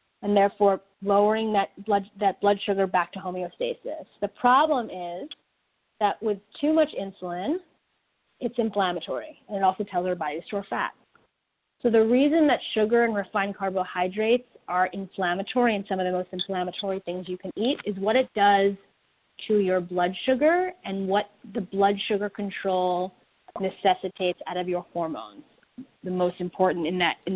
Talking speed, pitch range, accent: 165 wpm, 185-225 Hz, American